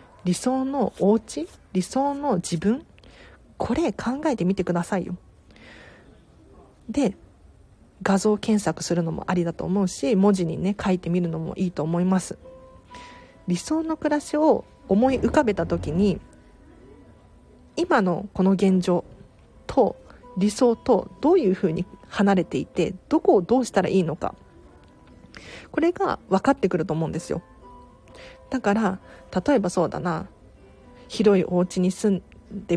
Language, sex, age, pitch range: Japanese, female, 40-59, 175-225 Hz